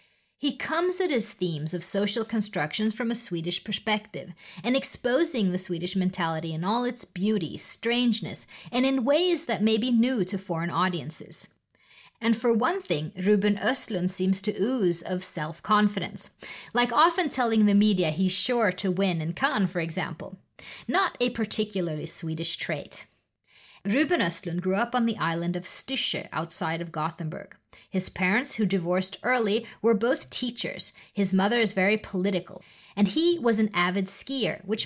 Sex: female